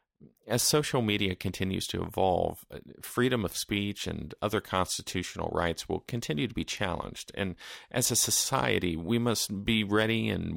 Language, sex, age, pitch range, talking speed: English, male, 40-59, 85-105 Hz, 155 wpm